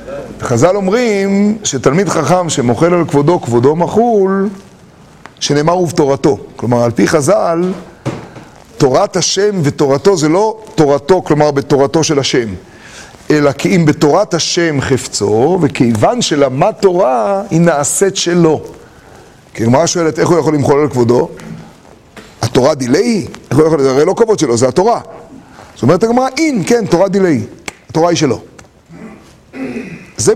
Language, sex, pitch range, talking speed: Hebrew, male, 145-195 Hz, 135 wpm